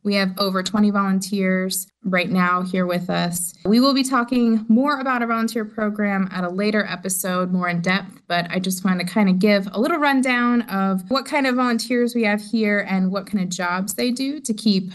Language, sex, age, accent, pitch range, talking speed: English, female, 20-39, American, 185-225 Hz, 215 wpm